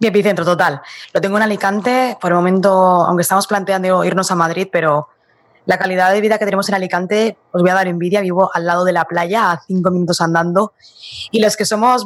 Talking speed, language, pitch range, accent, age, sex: 220 wpm, Spanish, 180-215 Hz, Spanish, 20-39, female